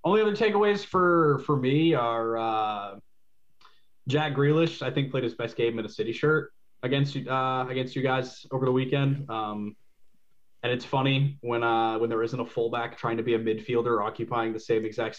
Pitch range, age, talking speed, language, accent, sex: 115-130 Hz, 20-39, 190 wpm, English, American, male